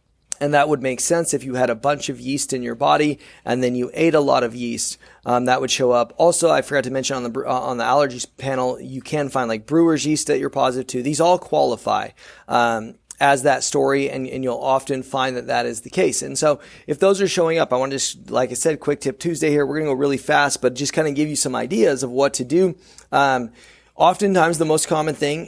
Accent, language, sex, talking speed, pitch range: American, English, male, 255 wpm, 125-150 Hz